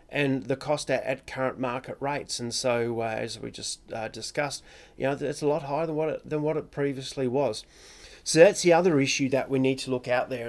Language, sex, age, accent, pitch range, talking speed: English, male, 30-49, Australian, 120-150 Hz, 235 wpm